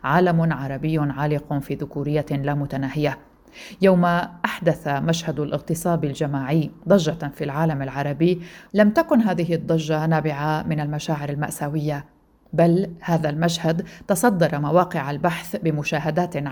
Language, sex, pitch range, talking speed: Arabic, female, 150-180 Hz, 115 wpm